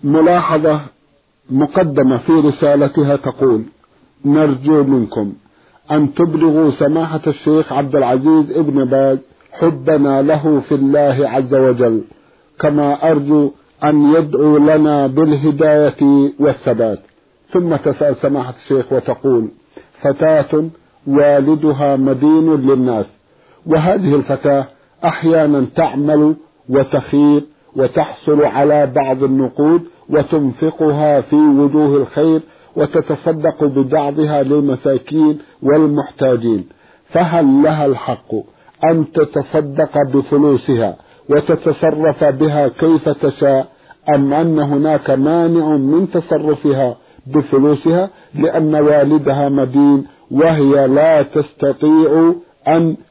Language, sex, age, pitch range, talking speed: Arabic, male, 50-69, 140-155 Hz, 90 wpm